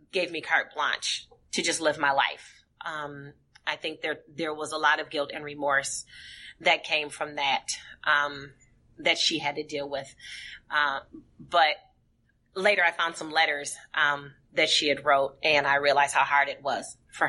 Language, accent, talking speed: English, American, 180 wpm